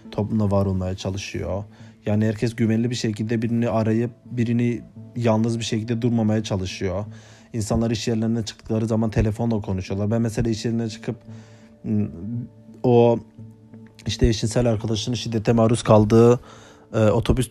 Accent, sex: native, male